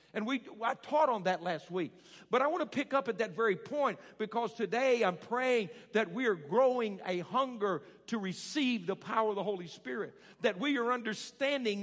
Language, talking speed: English, 205 wpm